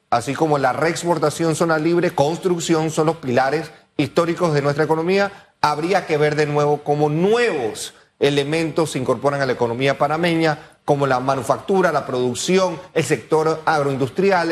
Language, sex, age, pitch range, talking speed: Spanish, male, 40-59, 145-175 Hz, 150 wpm